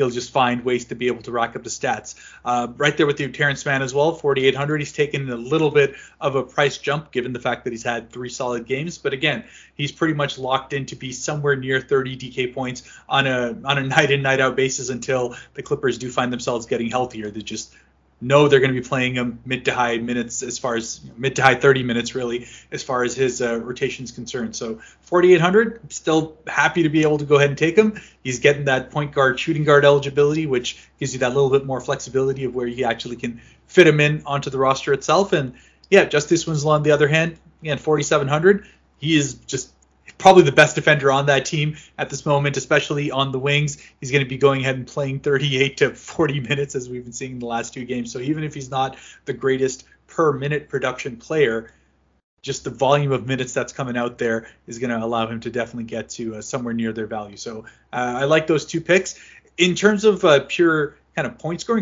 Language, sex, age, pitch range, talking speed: English, male, 30-49, 125-150 Hz, 235 wpm